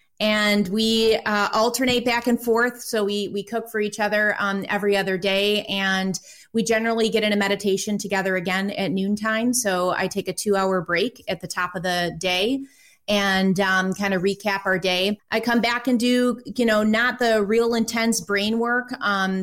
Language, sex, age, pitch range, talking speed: English, female, 30-49, 185-220 Hz, 190 wpm